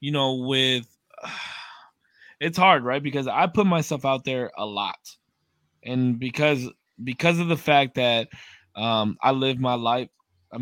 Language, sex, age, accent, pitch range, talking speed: English, male, 20-39, American, 115-140 Hz, 155 wpm